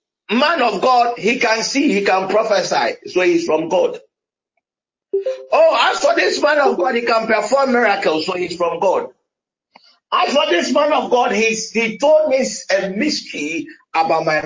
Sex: male